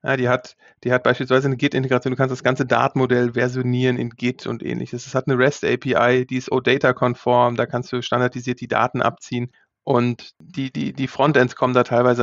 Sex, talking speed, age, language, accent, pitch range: male, 185 wpm, 30-49, German, German, 125-145 Hz